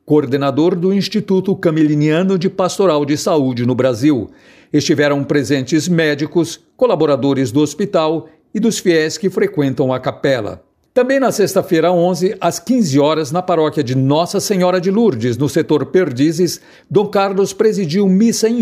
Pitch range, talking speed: 145-185 Hz, 145 wpm